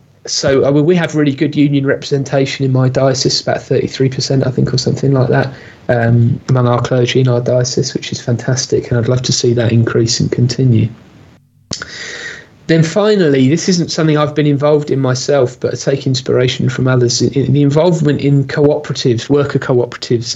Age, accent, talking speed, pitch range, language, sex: 30-49, British, 180 wpm, 120-145 Hz, English, male